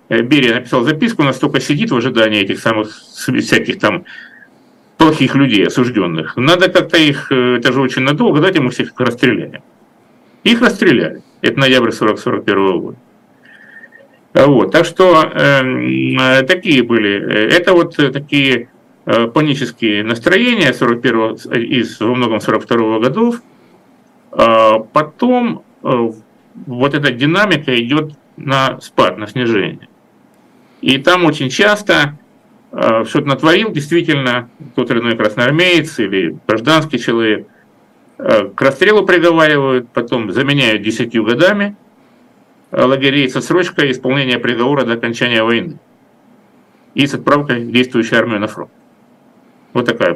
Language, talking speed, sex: Russian, 115 wpm, male